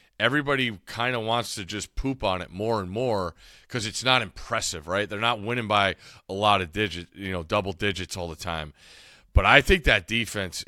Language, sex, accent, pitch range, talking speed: English, male, American, 95-120 Hz, 210 wpm